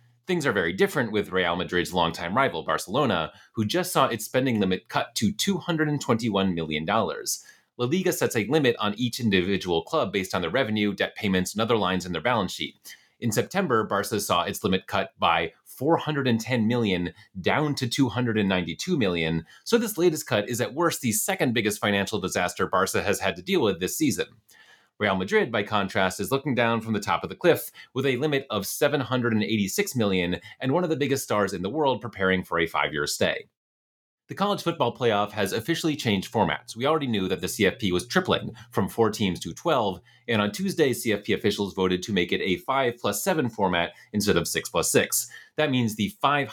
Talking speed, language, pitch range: 190 wpm, English, 95-135 Hz